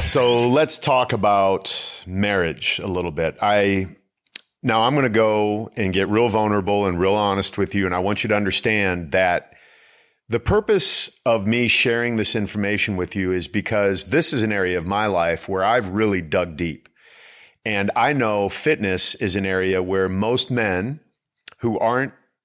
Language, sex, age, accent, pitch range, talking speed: English, male, 40-59, American, 95-125 Hz, 175 wpm